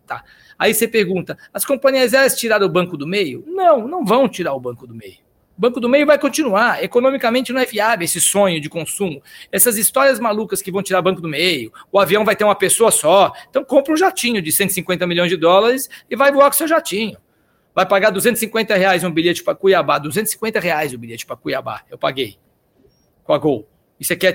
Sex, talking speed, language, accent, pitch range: male, 220 wpm, Portuguese, Brazilian, 180-250 Hz